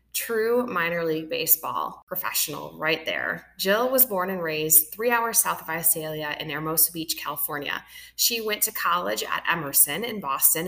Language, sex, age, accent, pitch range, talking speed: English, female, 20-39, American, 160-205 Hz, 165 wpm